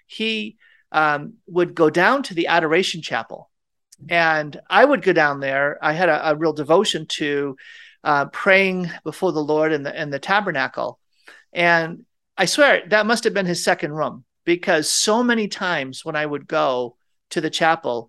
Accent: American